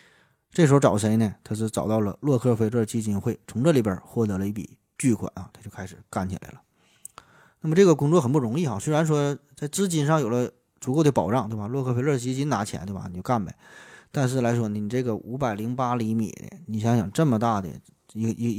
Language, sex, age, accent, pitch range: Chinese, male, 20-39, native, 105-130 Hz